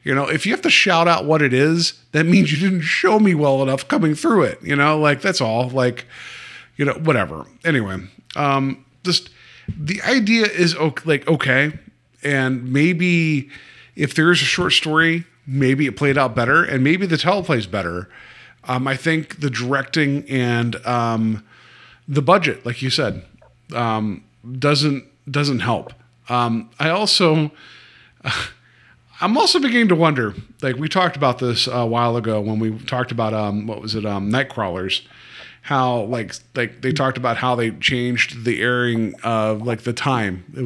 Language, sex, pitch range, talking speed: English, male, 120-170 Hz, 175 wpm